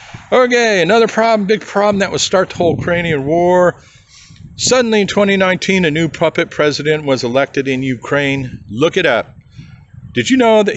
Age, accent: 40-59, American